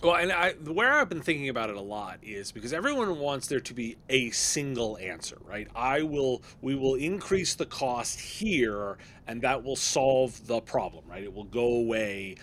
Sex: male